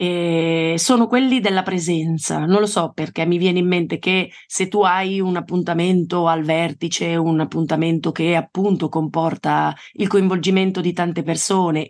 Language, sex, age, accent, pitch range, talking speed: Italian, female, 30-49, native, 160-190 Hz, 155 wpm